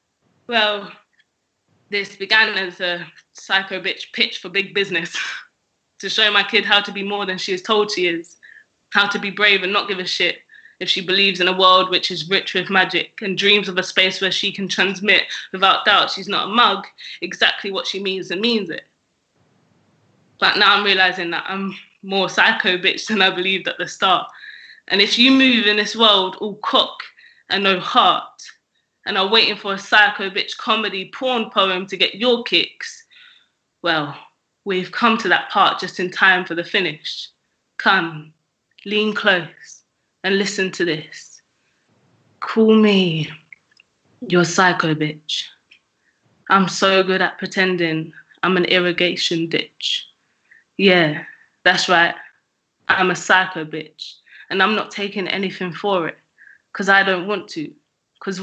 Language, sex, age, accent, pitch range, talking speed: English, female, 20-39, British, 185-210 Hz, 165 wpm